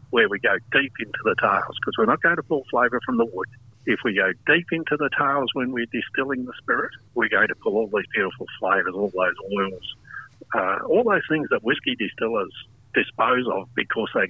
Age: 60-79